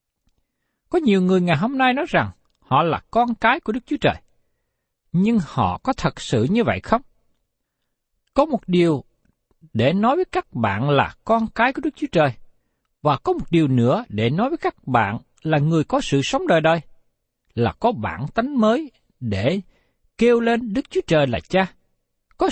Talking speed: 185 wpm